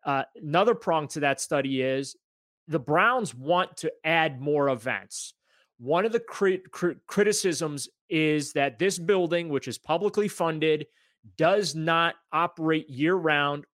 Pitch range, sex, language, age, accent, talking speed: 140-175 Hz, male, English, 30-49, American, 130 wpm